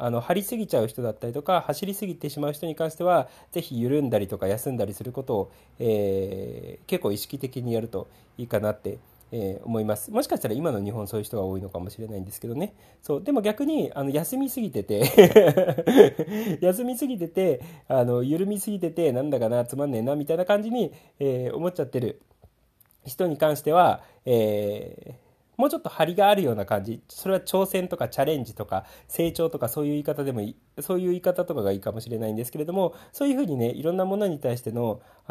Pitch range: 110-175 Hz